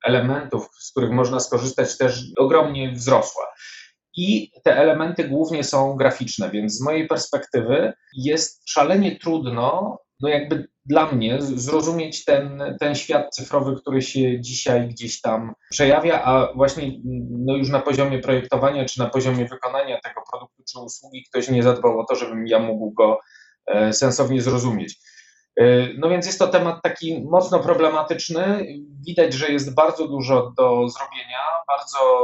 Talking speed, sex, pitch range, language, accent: 145 wpm, male, 125-155 Hz, Polish, native